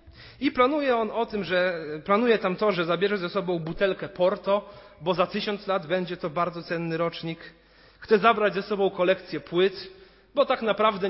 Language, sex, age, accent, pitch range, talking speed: Polish, male, 30-49, native, 155-200 Hz, 180 wpm